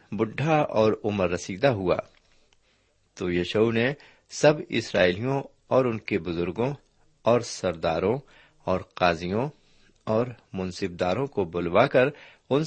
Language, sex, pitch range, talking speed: Urdu, male, 100-145 Hz, 120 wpm